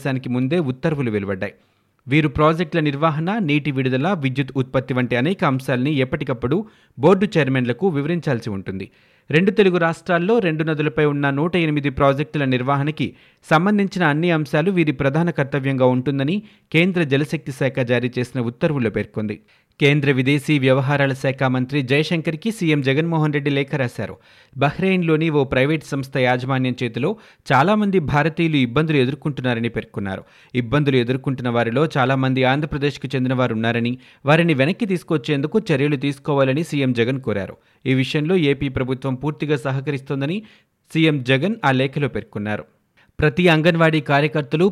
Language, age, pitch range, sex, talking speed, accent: Telugu, 30-49, 130-160 Hz, male, 125 wpm, native